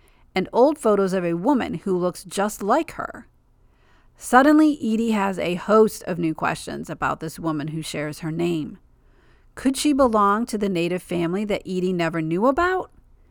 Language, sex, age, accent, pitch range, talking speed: English, female, 40-59, American, 170-225 Hz, 170 wpm